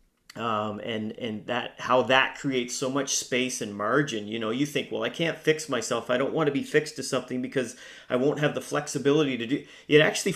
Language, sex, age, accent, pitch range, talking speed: English, male, 30-49, American, 115-140 Hz, 225 wpm